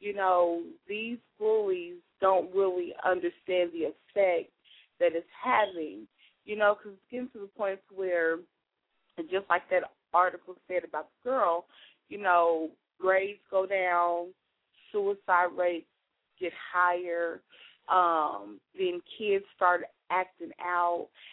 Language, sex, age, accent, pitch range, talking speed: English, female, 20-39, American, 175-215 Hz, 125 wpm